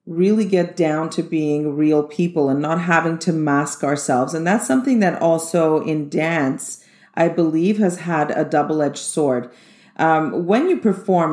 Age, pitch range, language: 40-59, 150-175 Hz, English